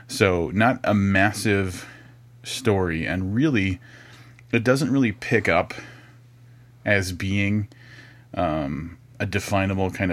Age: 30-49